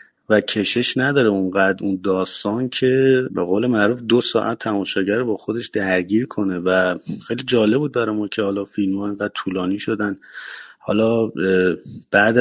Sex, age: male, 30-49